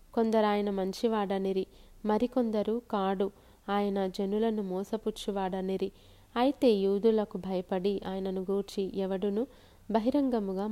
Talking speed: 85 wpm